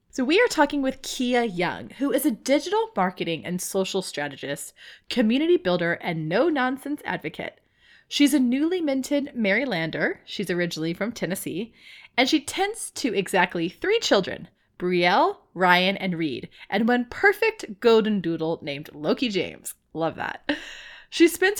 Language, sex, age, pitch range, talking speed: English, female, 20-39, 180-285 Hz, 145 wpm